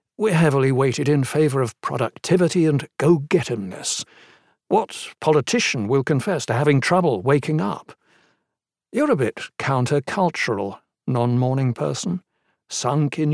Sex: male